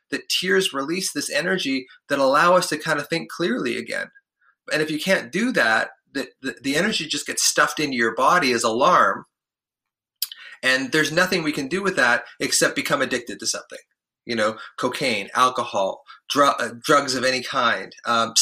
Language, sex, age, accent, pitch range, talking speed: English, male, 30-49, American, 130-170 Hz, 175 wpm